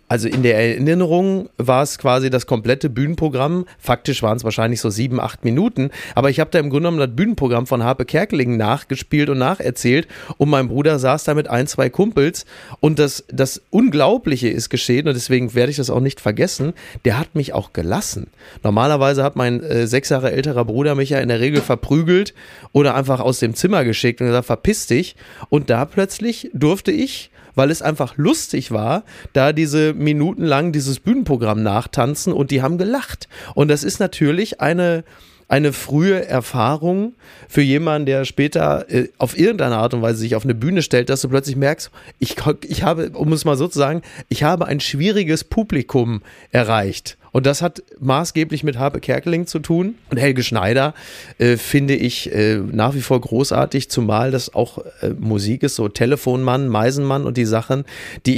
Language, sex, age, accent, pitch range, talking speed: German, male, 30-49, German, 120-150 Hz, 185 wpm